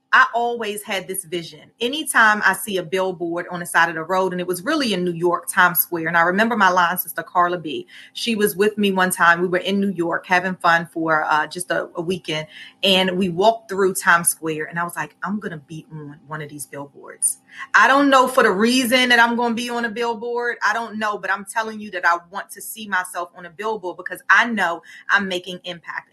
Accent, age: American, 30-49